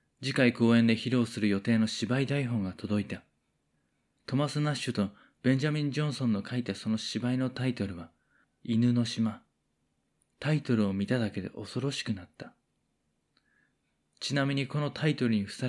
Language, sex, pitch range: Japanese, male, 110-135 Hz